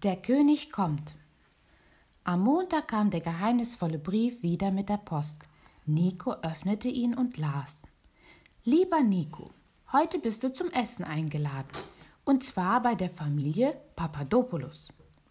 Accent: German